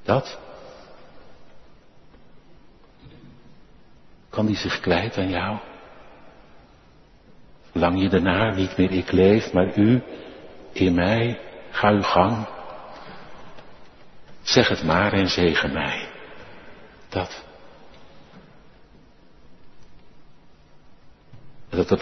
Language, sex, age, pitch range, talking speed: Dutch, male, 60-79, 90-110 Hz, 80 wpm